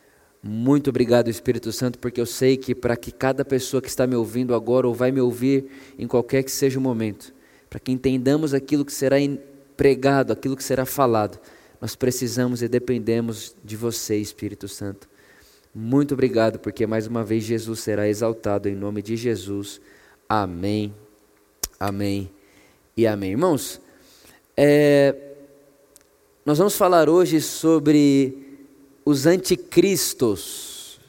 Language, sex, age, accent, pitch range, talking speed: Portuguese, male, 20-39, Brazilian, 125-150 Hz, 135 wpm